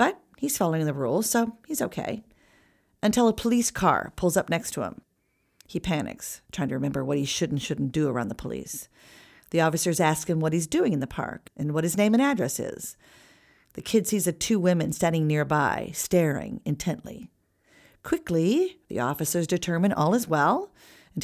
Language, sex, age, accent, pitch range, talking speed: English, female, 40-59, American, 160-220 Hz, 185 wpm